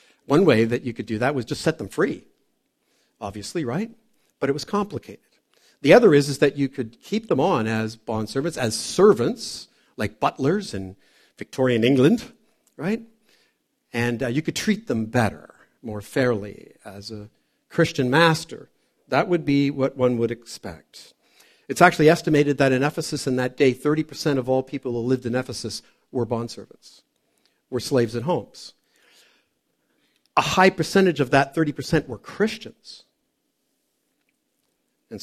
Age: 50-69